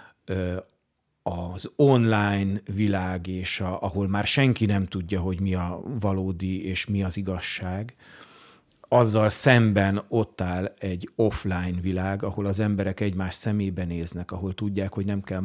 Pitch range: 95-110 Hz